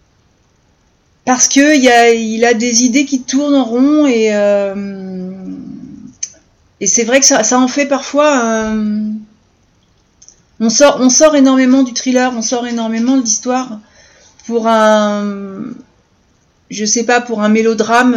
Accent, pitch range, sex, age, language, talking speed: French, 215-265 Hz, female, 40-59, French, 140 wpm